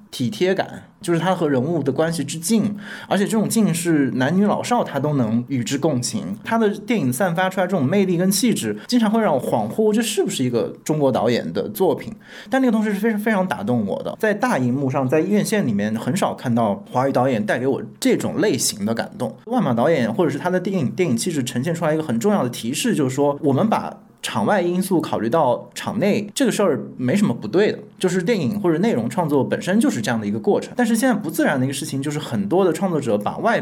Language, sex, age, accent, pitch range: Chinese, male, 20-39, native, 140-215 Hz